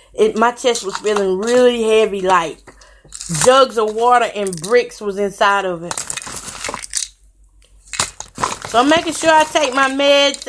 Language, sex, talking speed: English, female, 145 wpm